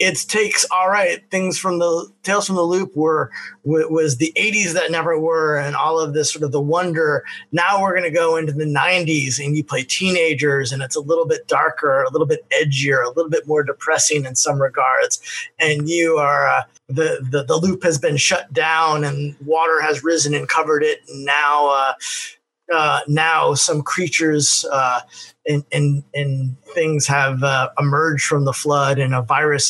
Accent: American